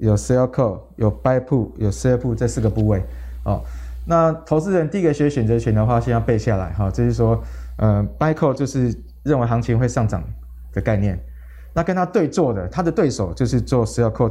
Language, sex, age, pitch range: Chinese, male, 20-39, 105-140 Hz